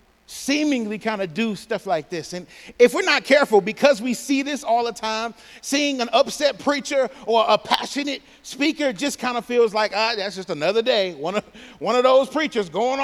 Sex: male